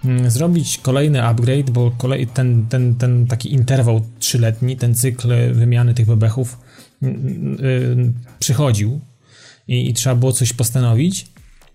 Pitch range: 120-145 Hz